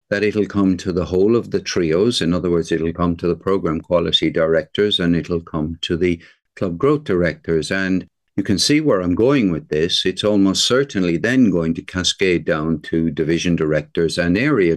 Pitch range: 85-100 Hz